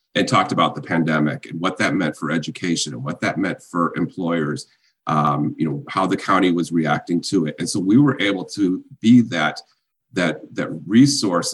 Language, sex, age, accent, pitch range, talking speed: English, male, 40-59, American, 80-115 Hz, 200 wpm